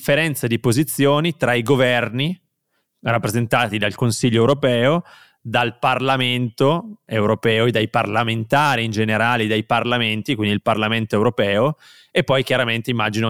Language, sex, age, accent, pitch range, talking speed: Italian, male, 20-39, native, 115-135 Hz, 120 wpm